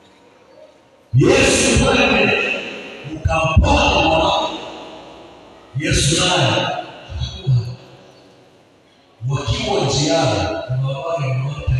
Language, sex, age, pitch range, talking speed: Swahili, male, 50-69, 115-145 Hz, 60 wpm